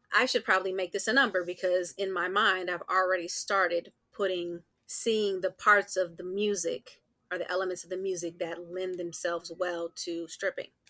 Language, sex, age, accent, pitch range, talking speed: English, female, 30-49, American, 175-190 Hz, 180 wpm